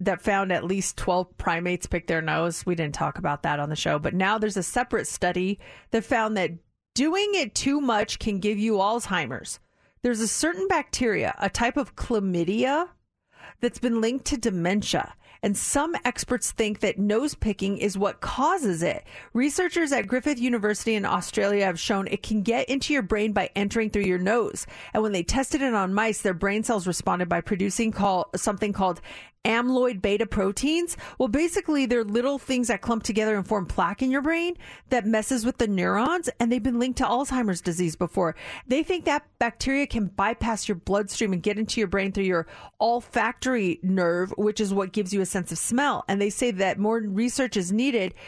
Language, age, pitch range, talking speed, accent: English, 40-59, 195-255 Hz, 195 wpm, American